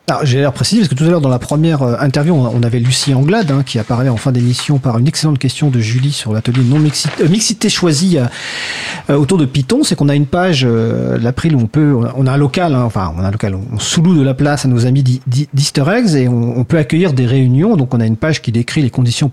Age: 40-59